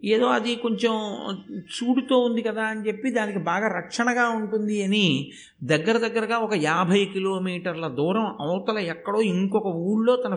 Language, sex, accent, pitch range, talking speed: Telugu, male, native, 180-240 Hz, 140 wpm